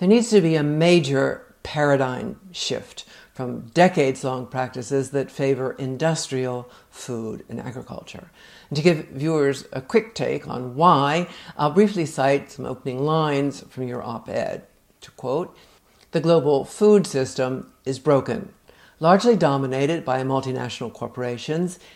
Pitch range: 130-170 Hz